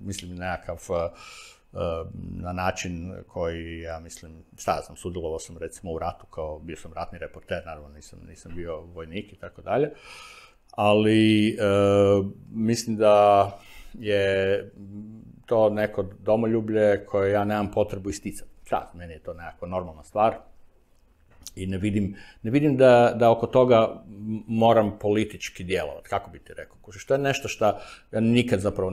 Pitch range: 90-110 Hz